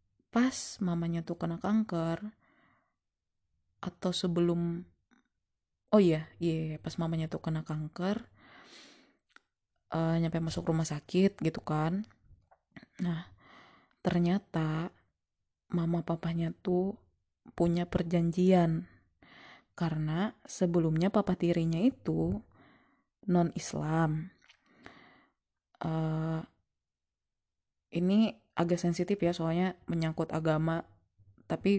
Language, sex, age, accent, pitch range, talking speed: Indonesian, female, 20-39, native, 155-180 Hz, 85 wpm